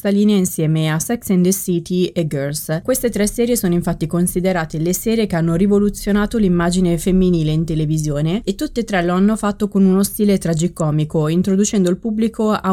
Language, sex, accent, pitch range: Italian, female, native, 160-195 Hz